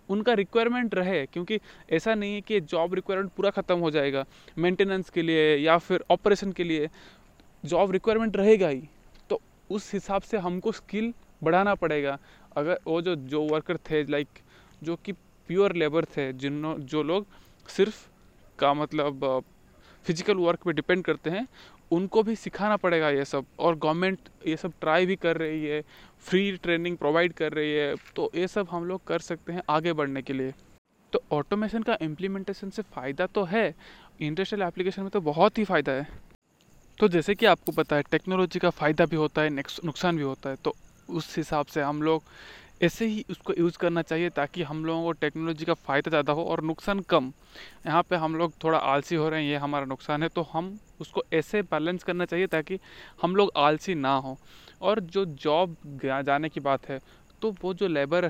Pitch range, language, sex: 155-195 Hz, Hindi, male